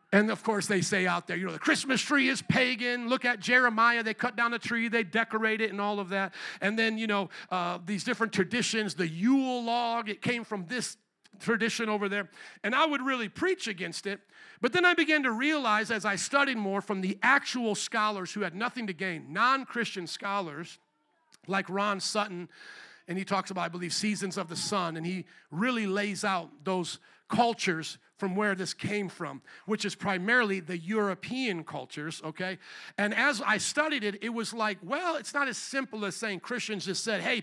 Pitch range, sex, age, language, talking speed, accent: 190-235 Hz, male, 50-69, English, 200 wpm, American